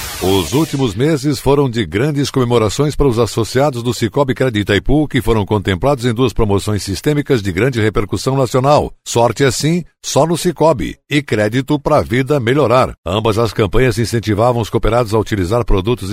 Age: 60-79